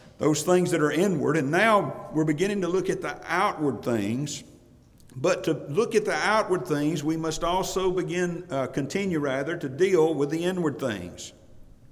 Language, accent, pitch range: English, American, 135-185 Hz